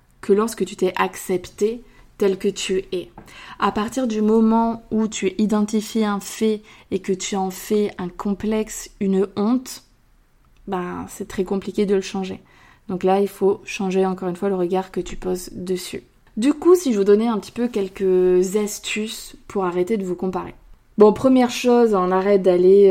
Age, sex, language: 20-39, female, French